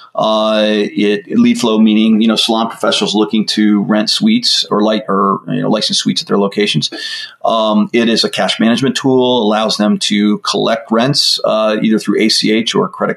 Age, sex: 40-59, male